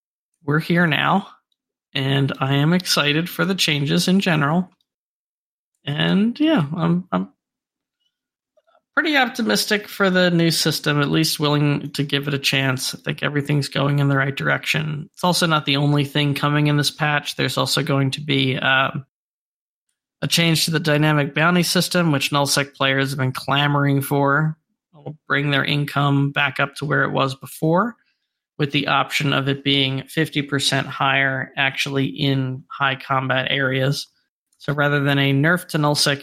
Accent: American